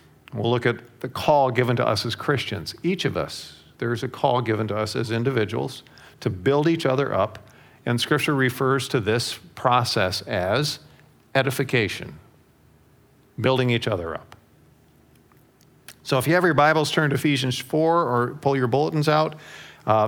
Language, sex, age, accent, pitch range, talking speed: English, male, 50-69, American, 120-145 Hz, 160 wpm